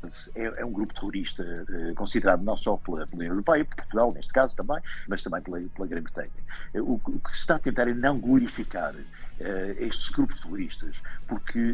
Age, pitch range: 50-69, 100-125 Hz